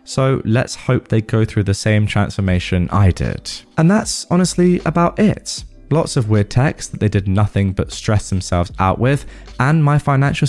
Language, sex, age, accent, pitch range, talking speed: English, male, 20-39, British, 90-120 Hz, 185 wpm